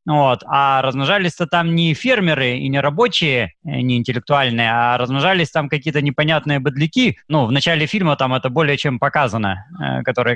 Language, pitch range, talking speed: Russian, 140-185 Hz, 155 wpm